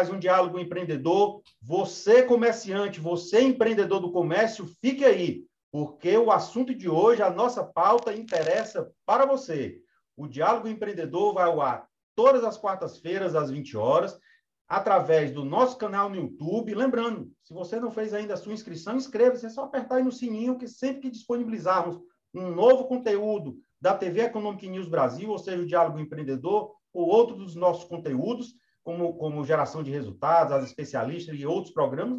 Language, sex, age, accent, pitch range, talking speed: Portuguese, male, 40-59, Brazilian, 165-240 Hz, 165 wpm